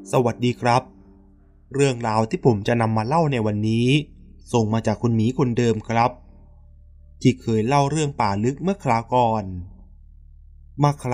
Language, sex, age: Thai, male, 20-39